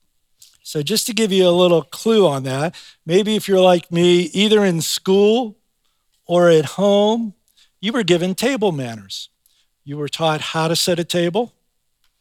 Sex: male